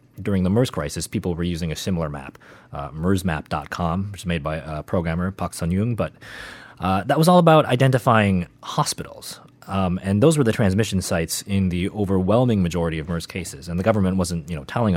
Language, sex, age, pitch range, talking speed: English, male, 30-49, 85-115 Hz, 195 wpm